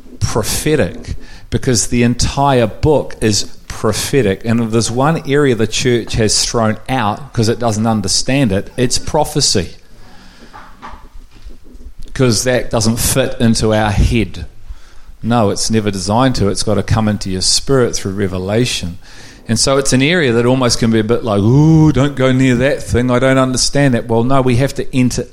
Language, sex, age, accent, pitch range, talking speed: English, male, 40-59, Australian, 100-130 Hz, 175 wpm